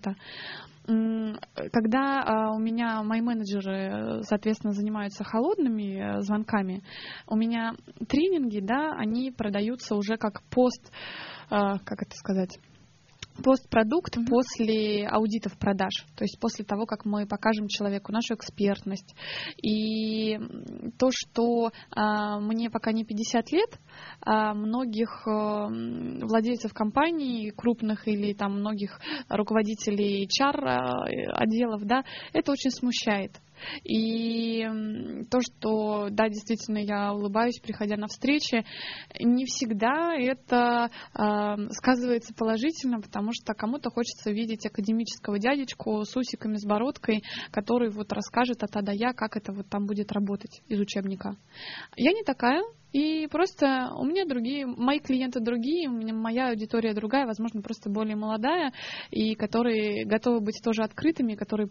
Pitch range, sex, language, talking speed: 210-240 Hz, female, Russian, 120 wpm